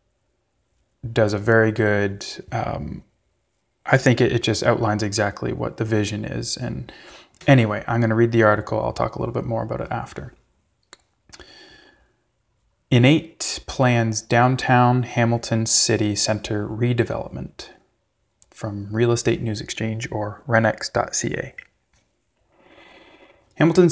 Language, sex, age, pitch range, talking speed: English, male, 20-39, 105-125 Hz, 120 wpm